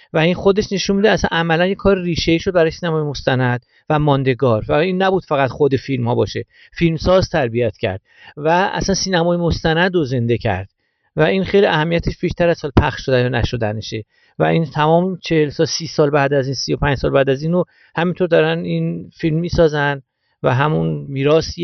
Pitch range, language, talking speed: 130-180 Hz, Persian, 195 wpm